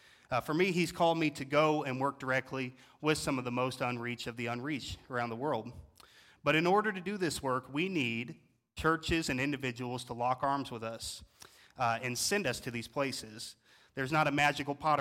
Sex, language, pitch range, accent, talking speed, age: male, English, 120-145 Hz, American, 210 wpm, 30-49